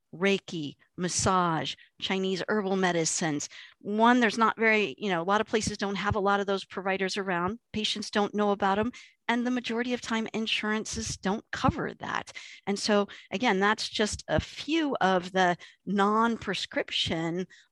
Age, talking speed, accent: 50-69, 160 wpm, American